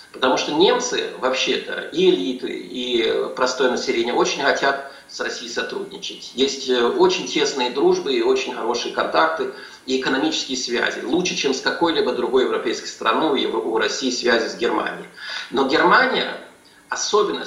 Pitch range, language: 325-445 Hz, Russian